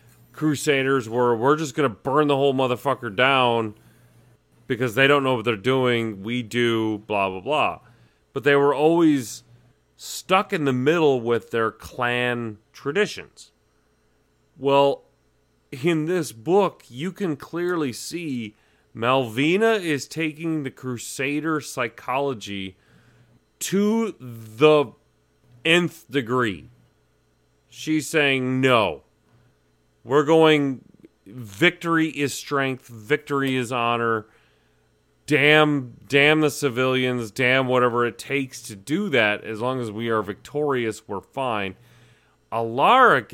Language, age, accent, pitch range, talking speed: English, 40-59, American, 115-145 Hz, 115 wpm